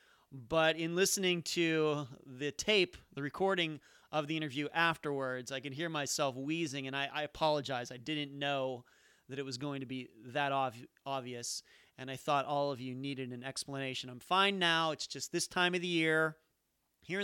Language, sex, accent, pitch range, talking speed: English, male, American, 130-160 Hz, 180 wpm